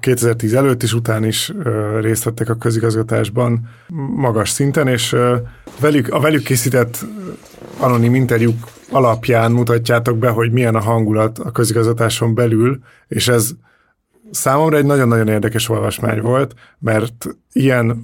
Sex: male